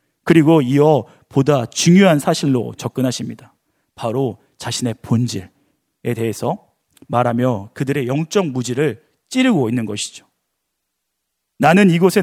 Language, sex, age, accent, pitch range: Korean, male, 40-59, native, 125-180 Hz